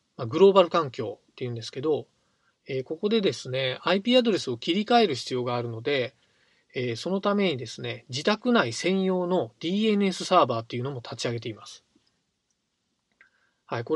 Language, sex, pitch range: Japanese, male, 125-195 Hz